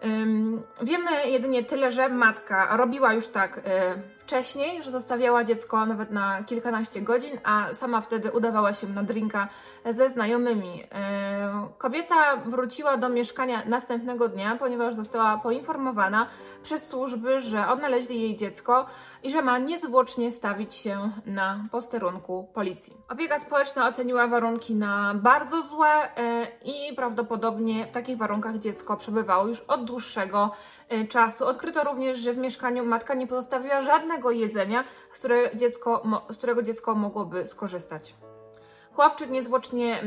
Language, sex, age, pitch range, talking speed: Polish, female, 20-39, 220-260 Hz, 125 wpm